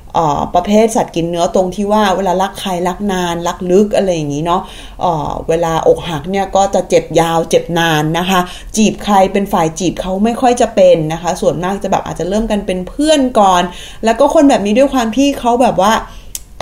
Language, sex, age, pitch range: Thai, female, 20-39, 175-240 Hz